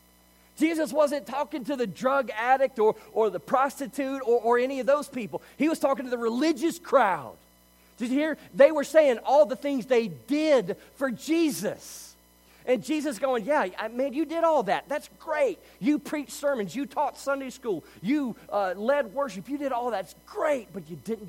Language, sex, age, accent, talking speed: English, male, 40-59, American, 190 wpm